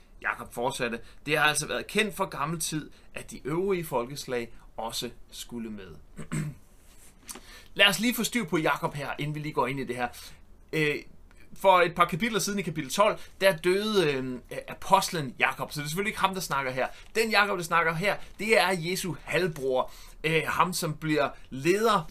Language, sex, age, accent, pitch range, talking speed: Danish, male, 30-49, native, 140-190 Hz, 180 wpm